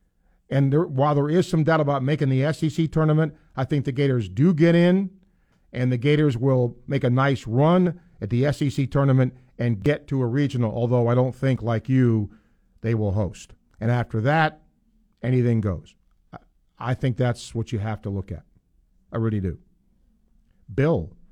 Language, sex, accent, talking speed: English, male, American, 175 wpm